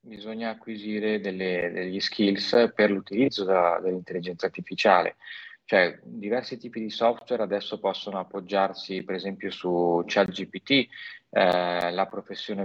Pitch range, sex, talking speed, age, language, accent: 95-120 Hz, male, 105 wpm, 30-49, Italian, native